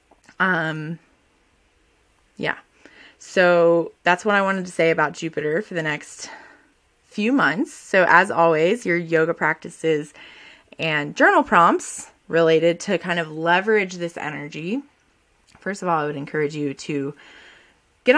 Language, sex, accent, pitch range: English, female, American, 155-195 Hz